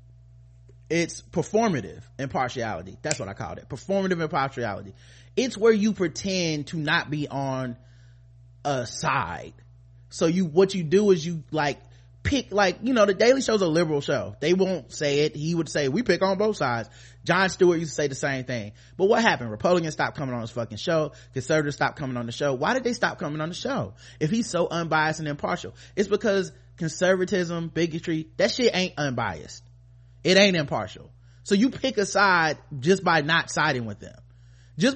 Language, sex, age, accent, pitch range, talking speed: English, male, 30-49, American, 120-185 Hz, 190 wpm